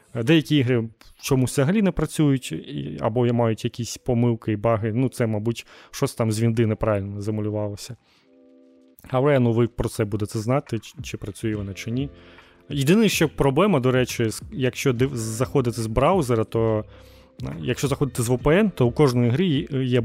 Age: 20-39